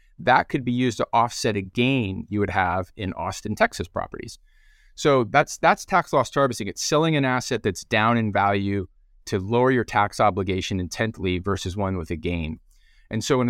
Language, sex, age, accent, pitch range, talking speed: English, male, 30-49, American, 95-120 Hz, 190 wpm